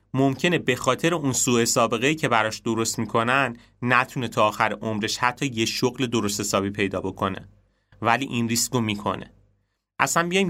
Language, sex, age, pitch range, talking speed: Persian, male, 30-49, 105-125 Hz, 160 wpm